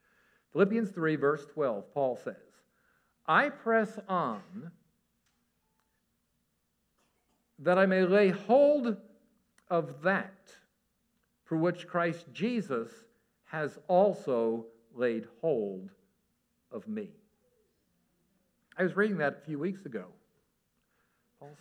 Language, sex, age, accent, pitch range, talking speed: English, male, 50-69, American, 170-215 Hz, 95 wpm